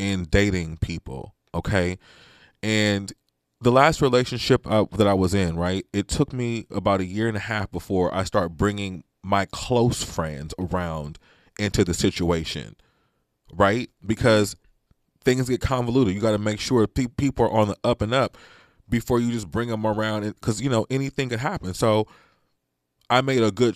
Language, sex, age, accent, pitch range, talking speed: English, male, 20-39, American, 100-130 Hz, 170 wpm